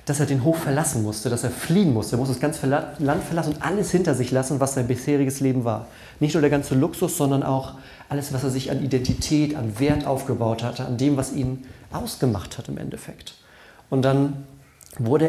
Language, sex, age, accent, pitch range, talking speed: German, male, 40-59, German, 125-145 Hz, 210 wpm